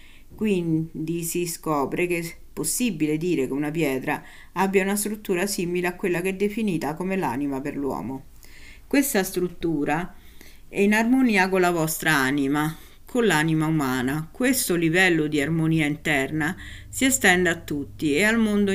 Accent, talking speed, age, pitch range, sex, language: native, 150 wpm, 50-69, 140-200 Hz, female, Italian